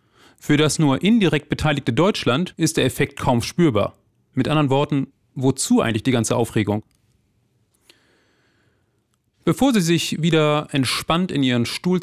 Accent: German